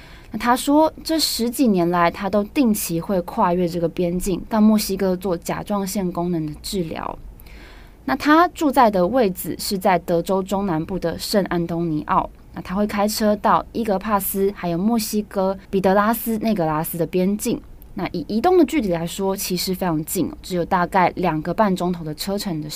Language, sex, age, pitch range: Chinese, female, 20-39, 170-215 Hz